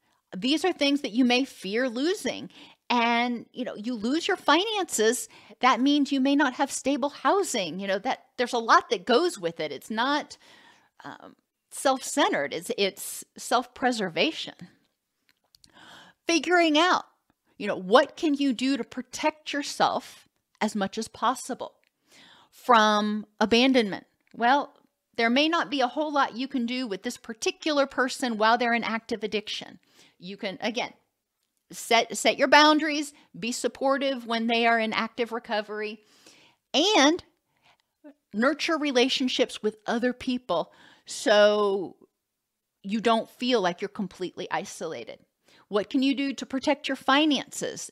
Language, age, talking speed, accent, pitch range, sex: English, 40-59, 145 wpm, American, 230-285 Hz, female